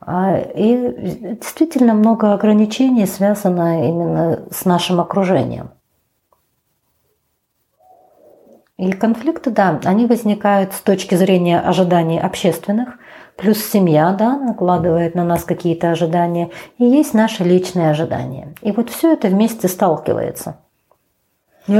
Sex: female